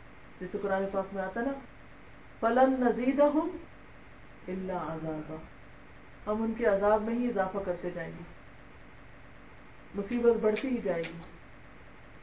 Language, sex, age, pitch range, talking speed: Urdu, female, 40-59, 205-300 Hz, 125 wpm